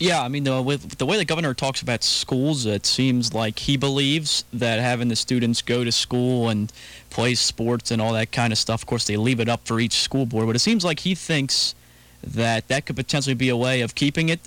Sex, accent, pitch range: male, American, 115-140 Hz